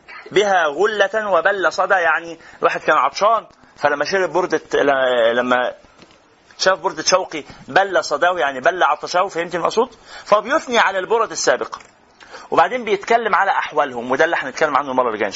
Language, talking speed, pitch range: Arabic, 145 wpm, 155-210 Hz